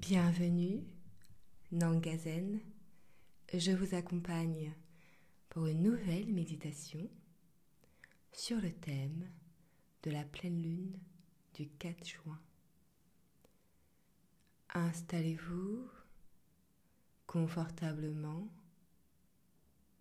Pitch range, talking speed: 165-185 Hz, 65 wpm